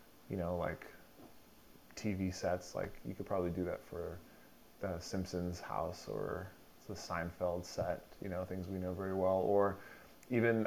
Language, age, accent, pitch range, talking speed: English, 20-39, American, 95-110 Hz, 155 wpm